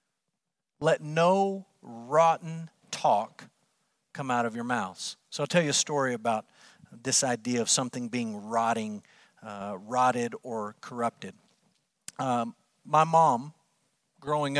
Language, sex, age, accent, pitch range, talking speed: English, male, 50-69, American, 125-160 Hz, 125 wpm